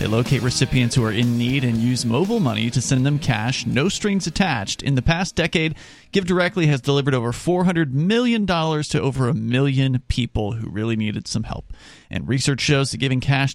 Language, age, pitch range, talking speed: English, 30-49, 120-150 Hz, 200 wpm